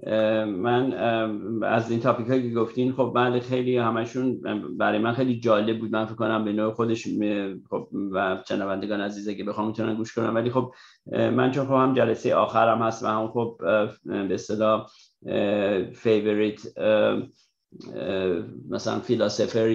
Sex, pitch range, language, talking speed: male, 105-115 Hz, Persian, 140 wpm